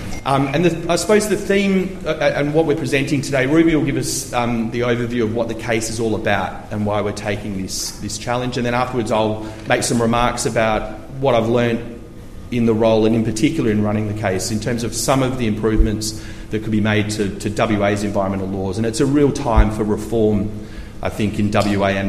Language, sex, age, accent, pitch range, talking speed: English, male, 30-49, Australian, 100-120 Hz, 225 wpm